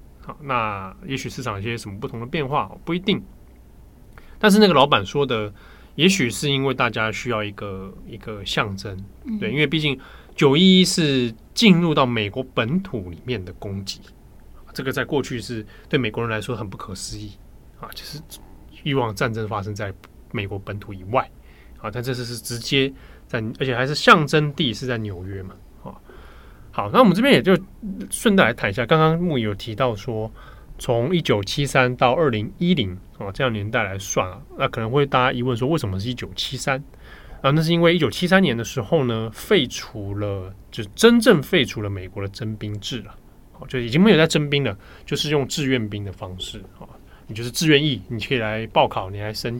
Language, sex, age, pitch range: Chinese, male, 20-39, 105-140 Hz